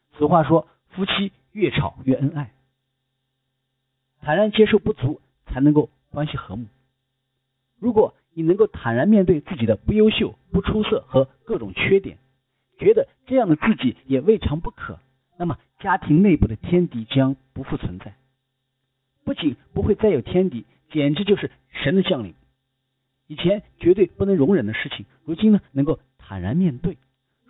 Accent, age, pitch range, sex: native, 50-69, 130-180 Hz, male